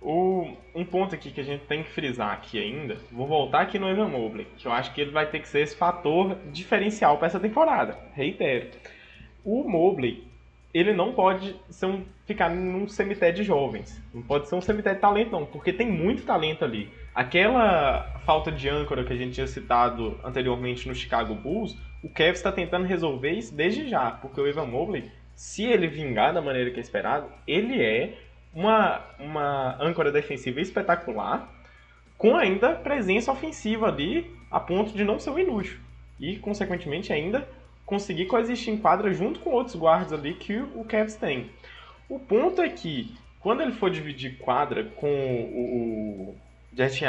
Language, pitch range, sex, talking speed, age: Portuguese, 135-205 Hz, male, 180 wpm, 20-39